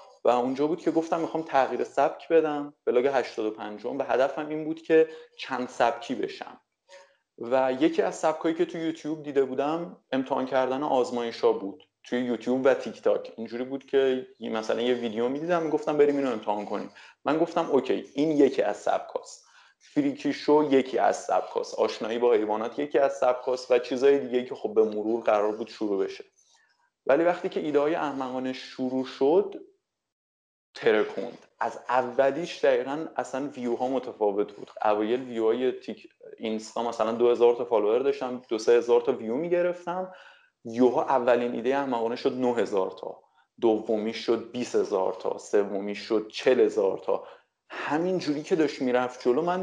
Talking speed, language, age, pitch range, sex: 165 wpm, Persian, 30-49, 125-175 Hz, male